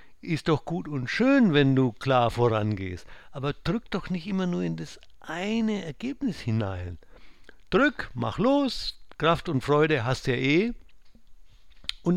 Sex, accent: male, German